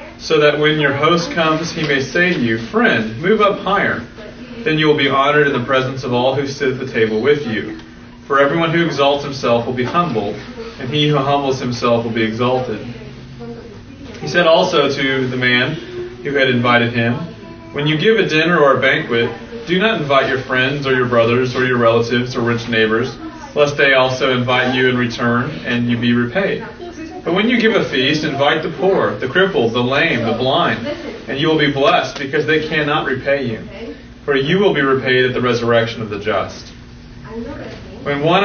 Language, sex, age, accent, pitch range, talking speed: English, male, 30-49, American, 120-155 Hz, 200 wpm